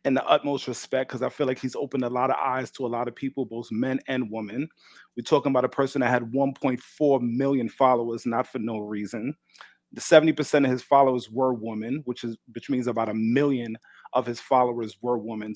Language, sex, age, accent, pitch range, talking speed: English, male, 30-49, American, 115-140 Hz, 220 wpm